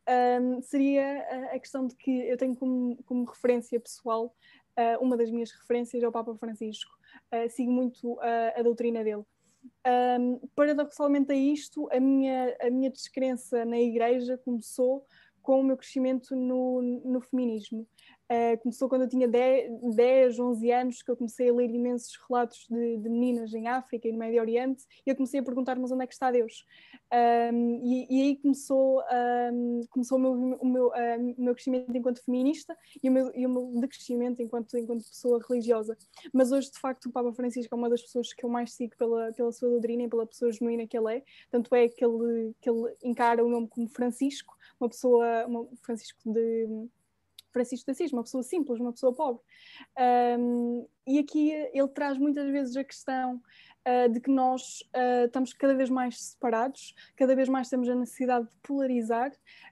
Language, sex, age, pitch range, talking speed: Portuguese, female, 10-29, 235-260 Hz, 180 wpm